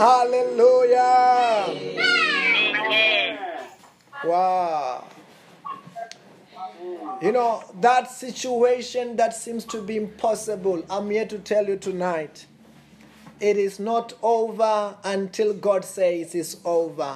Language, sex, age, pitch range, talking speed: English, male, 30-49, 200-285 Hz, 90 wpm